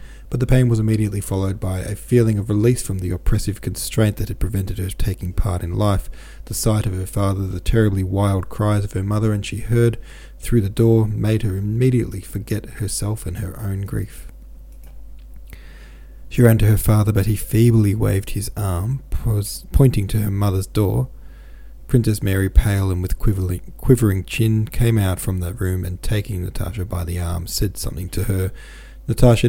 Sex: male